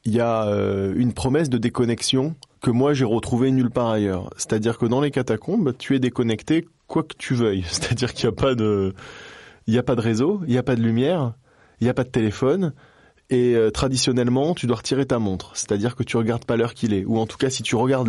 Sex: male